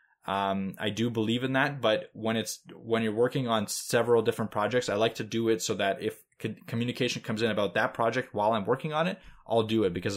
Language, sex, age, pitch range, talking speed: English, male, 20-39, 100-125 Hz, 230 wpm